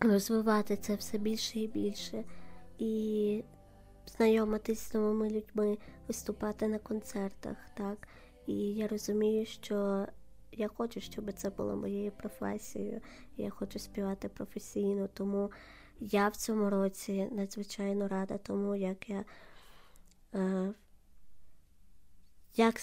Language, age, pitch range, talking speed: Ukrainian, 20-39, 195-215 Hz, 110 wpm